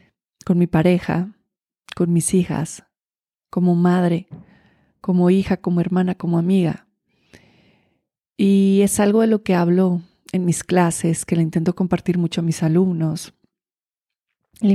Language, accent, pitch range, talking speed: Spanish, Mexican, 175-200 Hz, 135 wpm